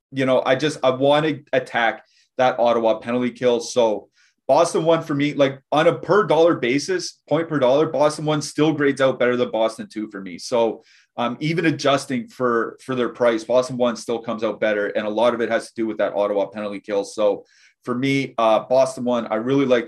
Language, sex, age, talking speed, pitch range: English, male, 30-49, 220 wpm, 115-145 Hz